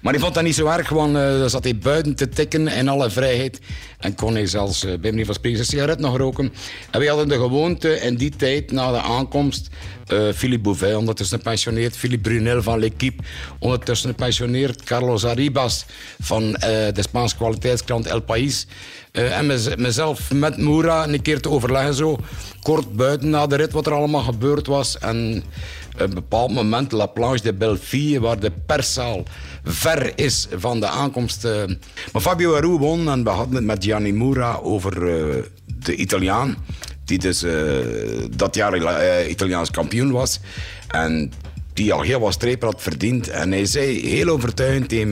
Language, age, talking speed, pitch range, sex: Dutch, 60-79, 175 wpm, 100-135 Hz, male